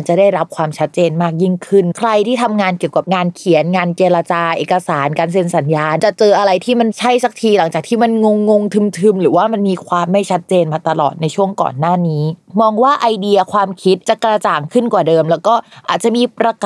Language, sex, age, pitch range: Thai, female, 20-39, 170-220 Hz